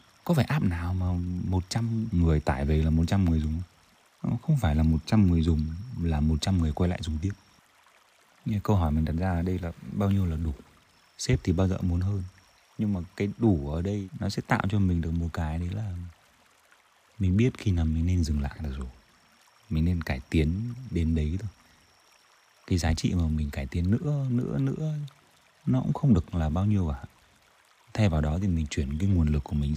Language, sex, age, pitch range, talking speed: Vietnamese, male, 20-39, 80-105 Hz, 215 wpm